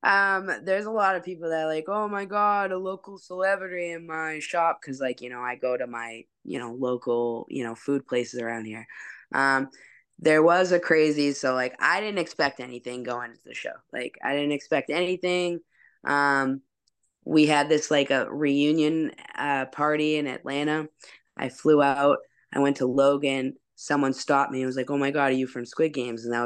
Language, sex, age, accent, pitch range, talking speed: English, female, 10-29, American, 130-195 Hz, 200 wpm